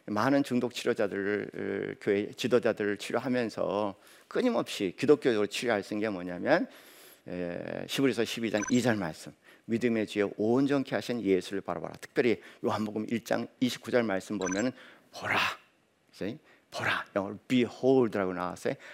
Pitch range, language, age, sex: 100-135 Hz, Korean, 50-69, male